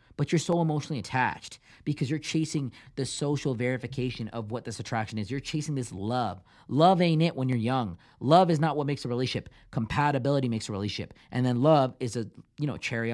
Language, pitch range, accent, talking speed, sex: English, 120-160 Hz, American, 205 wpm, male